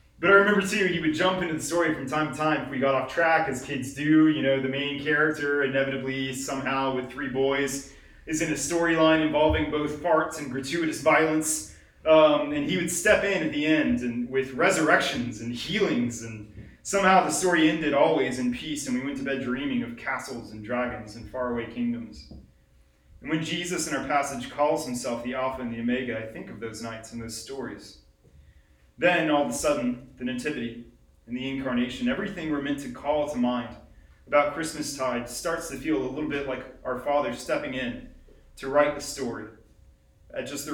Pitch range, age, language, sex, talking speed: 115-155 Hz, 30-49, English, male, 200 wpm